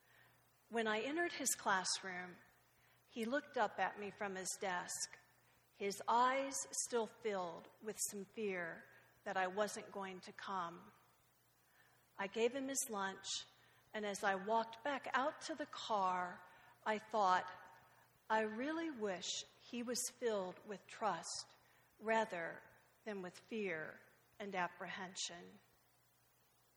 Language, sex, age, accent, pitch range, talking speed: English, female, 50-69, American, 190-245 Hz, 125 wpm